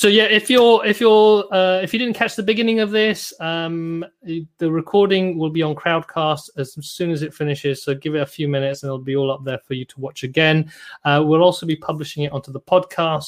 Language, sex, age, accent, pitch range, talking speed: English, male, 30-49, British, 145-180 Hz, 240 wpm